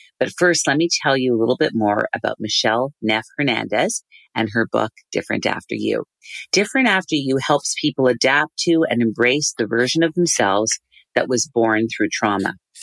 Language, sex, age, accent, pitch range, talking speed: English, female, 40-59, American, 115-150 Hz, 175 wpm